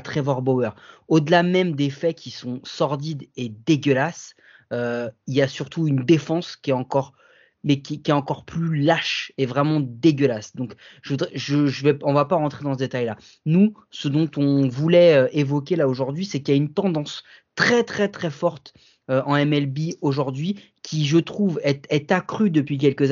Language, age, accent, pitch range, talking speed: French, 30-49, French, 135-170 Hz, 195 wpm